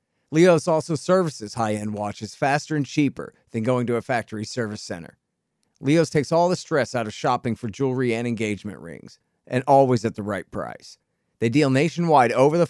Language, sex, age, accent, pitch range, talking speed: English, male, 40-59, American, 120-155 Hz, 185 wpm